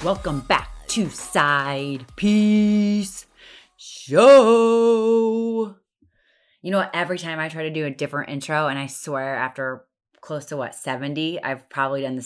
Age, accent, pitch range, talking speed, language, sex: 20-39, American, 140-185 Hz, 145 wpm, English, female